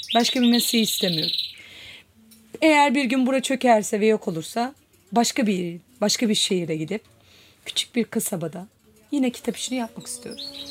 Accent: native